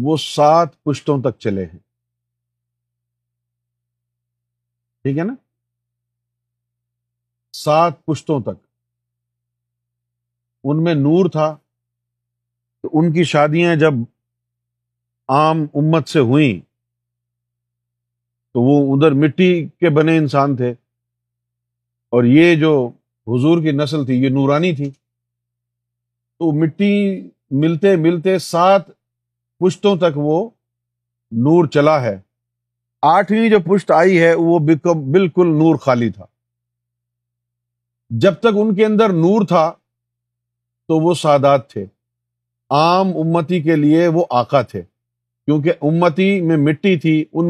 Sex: male